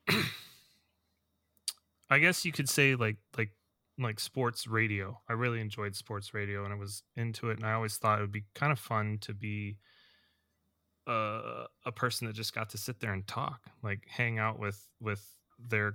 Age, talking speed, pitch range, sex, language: 20-39, 185 wpm, 100-115 Hz, male, English